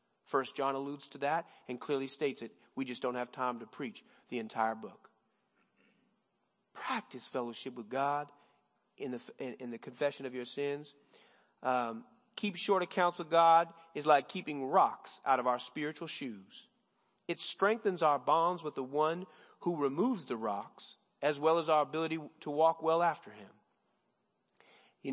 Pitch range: 130-160 Hz